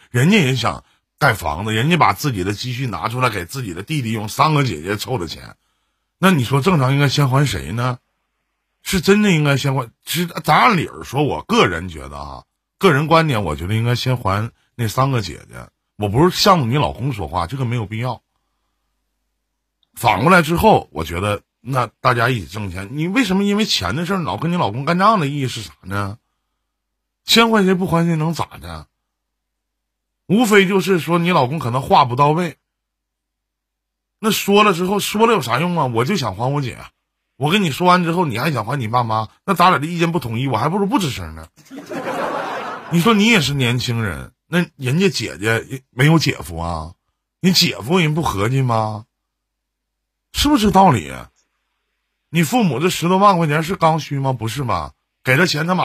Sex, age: male, 50-69